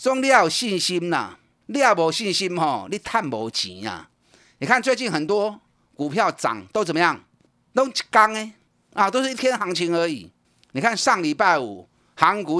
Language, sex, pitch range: Chinese, male, 135-220 Hz